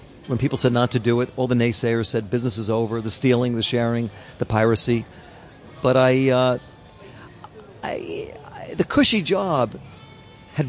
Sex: male